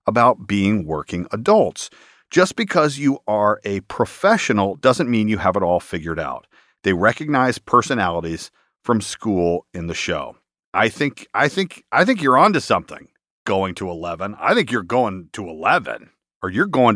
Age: 40-59